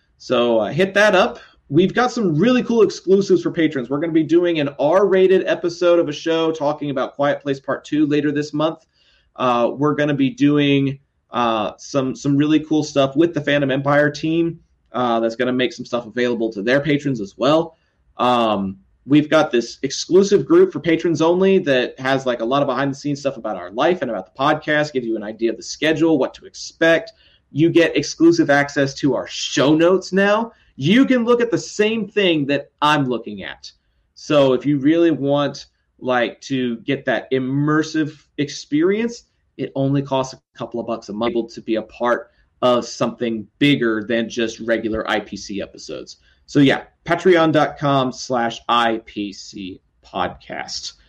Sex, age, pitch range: male, 30-49, 125-165 Hz